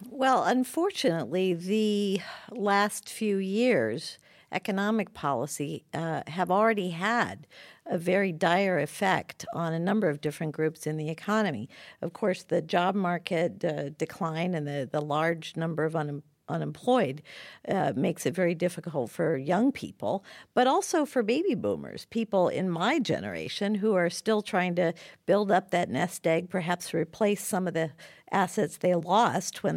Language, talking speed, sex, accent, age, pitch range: English, 150 wpm, female, American, 50-69, 170-215 Hz